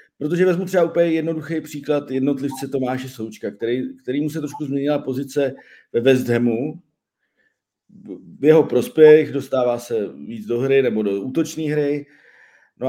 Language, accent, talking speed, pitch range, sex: Czech, native, 135 wpm, 125-155 Hz, male